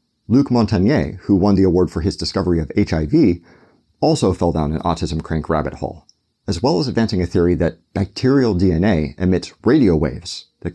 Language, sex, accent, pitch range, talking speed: English, male, American, 80-110 Hz, 180 wpm